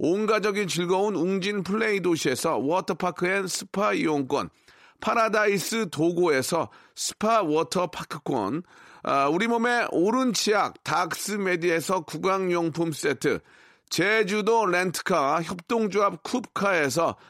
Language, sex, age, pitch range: Korean, male, 40-59, 170-210 Hz